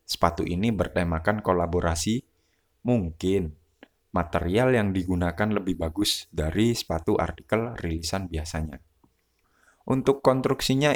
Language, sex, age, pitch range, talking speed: Indonesian, male, 20-39, 90-110 Hz, 95 wpm